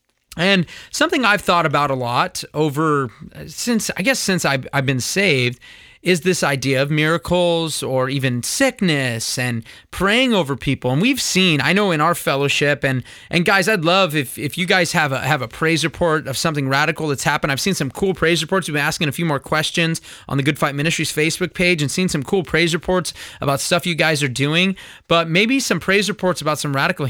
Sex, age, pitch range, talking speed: male, 30-49, 135-180 Hz, 215 wpm